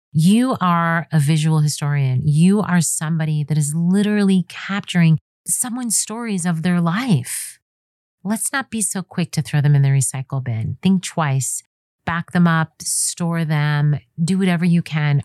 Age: 40-59